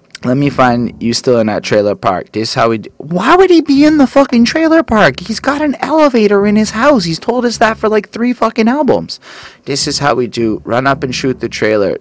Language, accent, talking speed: English, American, 250 wpm